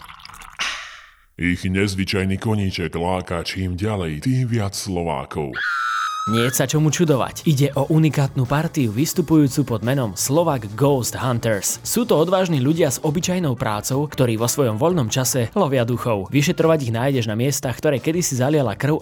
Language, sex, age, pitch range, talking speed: Slovak, male, 20-39, 110-155 Hz, 150 wpm